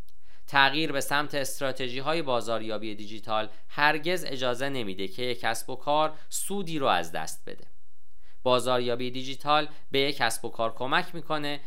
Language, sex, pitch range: Persian, male, 110-150 Hz